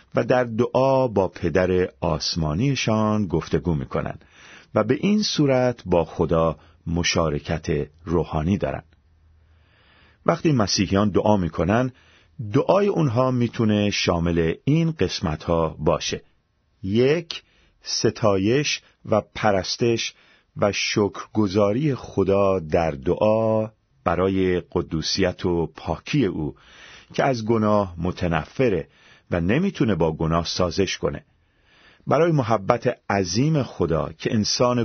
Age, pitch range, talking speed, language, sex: 40-59, 85-120 Hz, 100 wpm, Persian, male